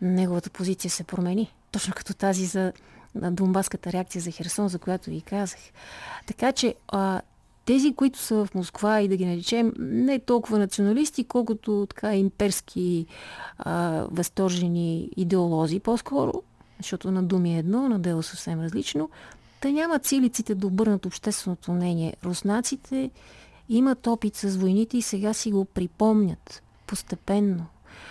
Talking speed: 140 wpm